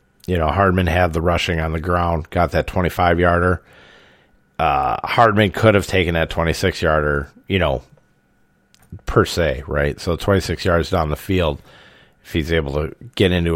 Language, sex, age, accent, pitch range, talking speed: English, male, 40-59, American, 85-110 Hz, 155 wpm